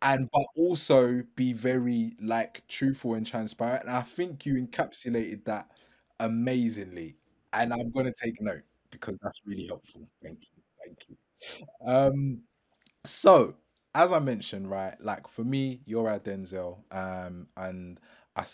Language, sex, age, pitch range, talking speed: English, male, 20-39, 95-125 Hz, 140 wpm